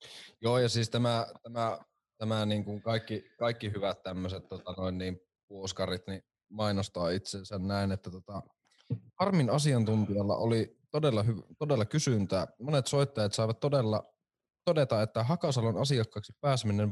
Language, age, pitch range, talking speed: Finnish, 20-39, 105-140 Hz, 130 wpm